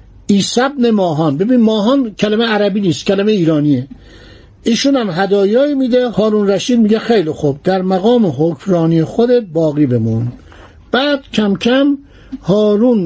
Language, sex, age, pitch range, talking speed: Persian, male, 60-79, 165-235 Hz, 135 wpm